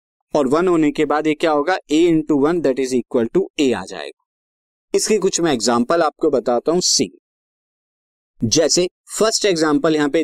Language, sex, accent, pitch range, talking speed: Hindi, male, native, 135-185 Hz, 130 wpm